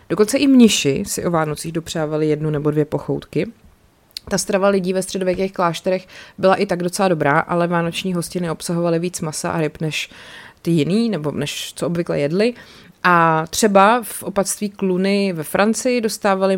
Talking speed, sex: 165 wpm, female